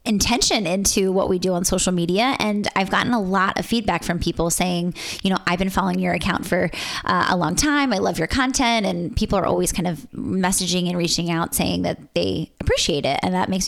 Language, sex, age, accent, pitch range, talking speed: English, female, 20-39, American, 170-205 Hz, 230 wpm